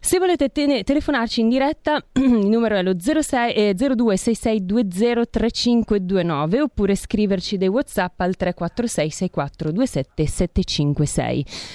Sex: female